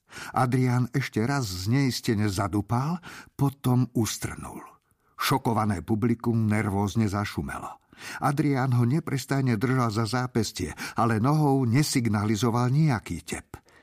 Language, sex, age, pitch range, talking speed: Slovak, male, 50-69, 105-130 Hz, 105 wpm